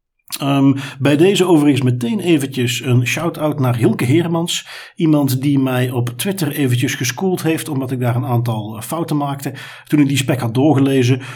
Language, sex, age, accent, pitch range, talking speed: Dutch, male, 50-69, Dutch, 120-150 Hz, 170 wpm